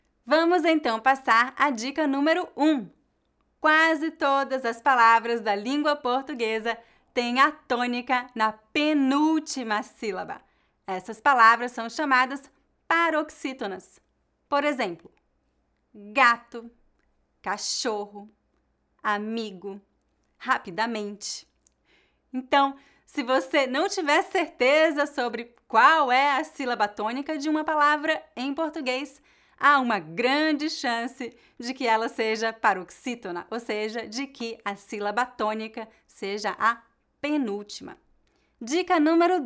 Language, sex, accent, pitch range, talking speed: English, female, Brazilian, 230-300 Hz, 105 wpm